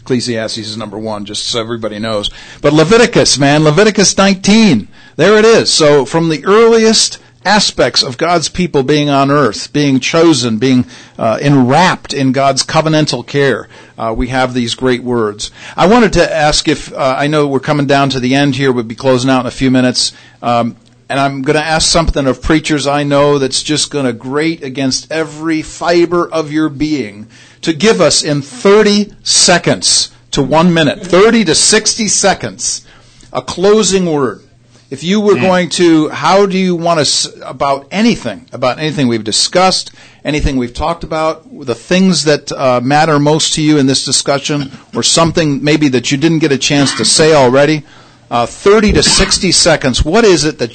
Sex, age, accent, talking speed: male, 50-69, American, 185 wpm